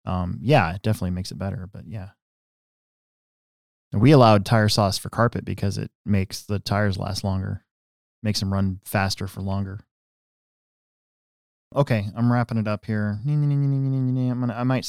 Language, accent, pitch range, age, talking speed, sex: English, American, 95-115 Hz, 20-39, 155 wpm, male